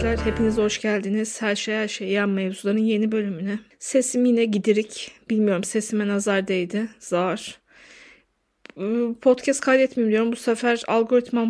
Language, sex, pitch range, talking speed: Turkish, female, 215-245 Hz, 130 wpm